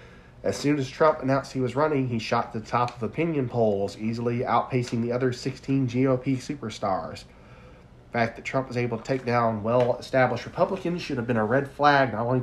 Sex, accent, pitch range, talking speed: male, American, 110-135 Hz, 200 wpm